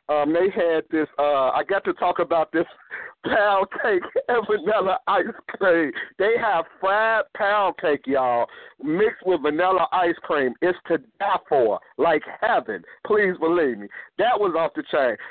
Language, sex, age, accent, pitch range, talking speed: English, male, 50-69, American, 155-205 Hz, 165 wpm